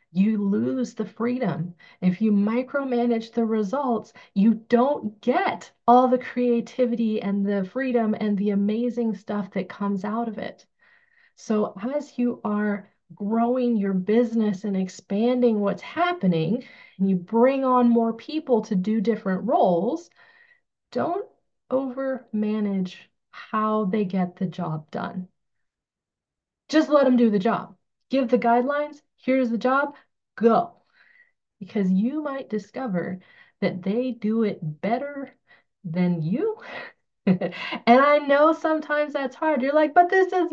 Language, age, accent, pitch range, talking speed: English, 30-49, American, 205-265 Hz, 135 wpm